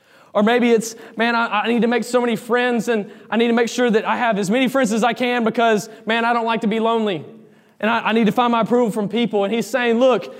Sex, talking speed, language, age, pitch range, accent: male, 285 wpm, English, 20-39, 225-255 Hz, American